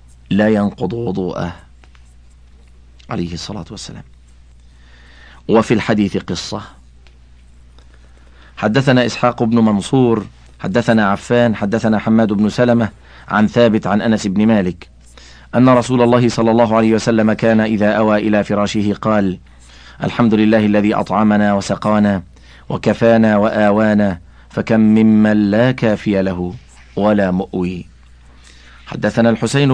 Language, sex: Arabic, male